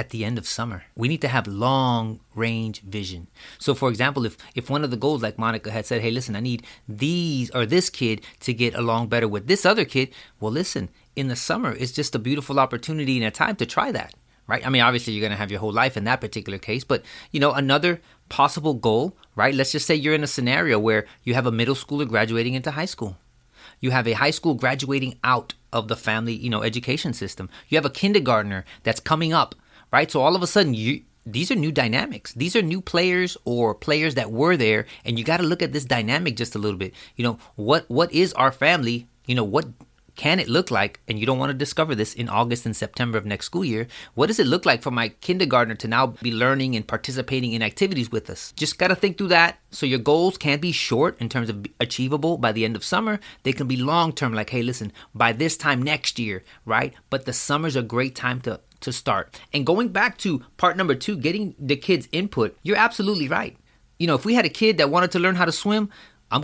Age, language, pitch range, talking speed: 30-49, English, 115-155 Hz, 240 wpm